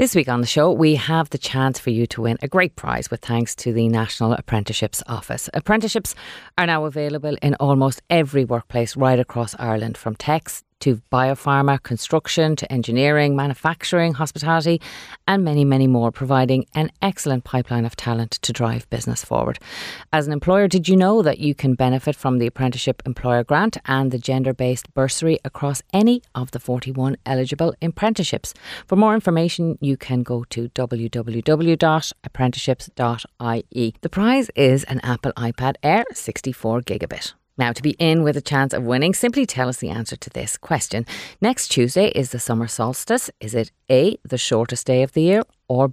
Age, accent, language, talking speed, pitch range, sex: 30-49, Irish, English, 175 wpm, 120-160 Hz, female